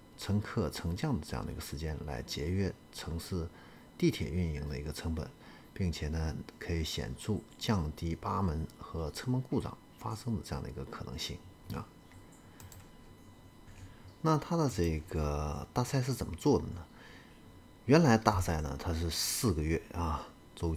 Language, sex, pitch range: Chinese, male, 80-105 Hz